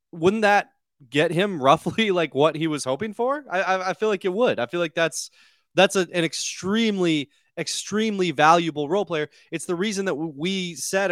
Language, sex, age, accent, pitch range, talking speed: English, male, 20-39, American, 145-185 Hz, 195 wpm